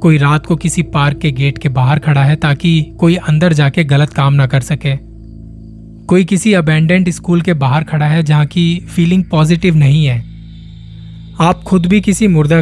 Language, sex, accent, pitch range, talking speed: Hindi, male, native, 135-170 Hz, 185 wpm